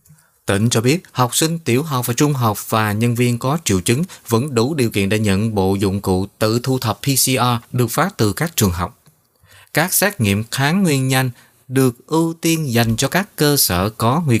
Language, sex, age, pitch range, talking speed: Vietnamese, male, 20-39, 110-140 Hz, 210 wpm